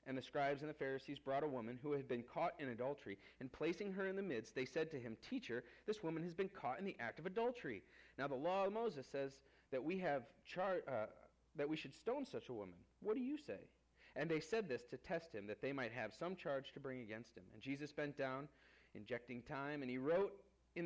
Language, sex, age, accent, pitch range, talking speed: English, male, 40-59, American, 105-145 Hz, 245 wpm